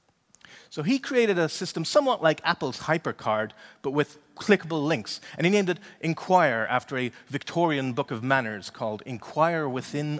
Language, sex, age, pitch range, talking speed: English, male, 40-59, 125-170 Hz, 160 wpm